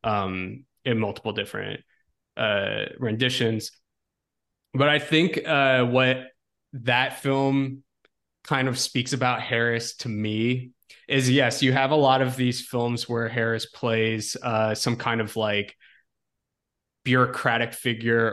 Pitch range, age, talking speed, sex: 110-130 Hz, 20-39, 130 wpm, male